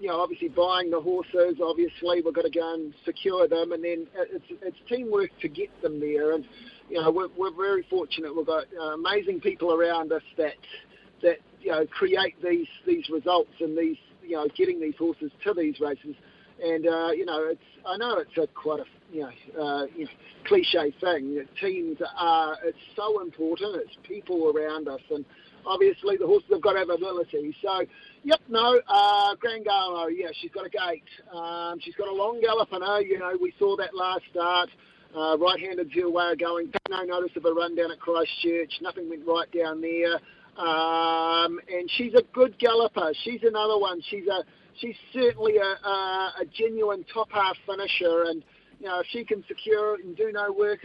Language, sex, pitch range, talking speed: English, male, 165-220 Hz, 195 wpm